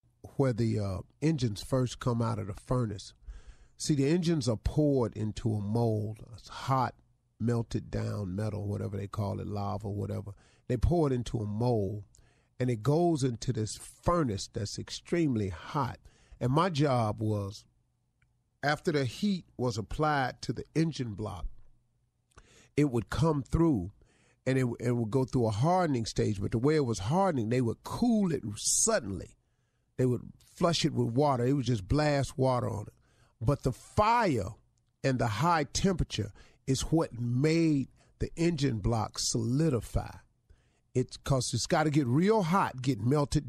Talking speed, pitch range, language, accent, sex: 160 wpm, 115-150 Hz, English, American, male